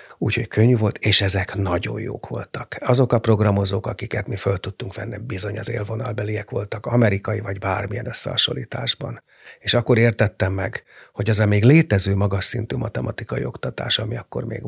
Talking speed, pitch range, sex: 165 wpm, 105-120 Hz, male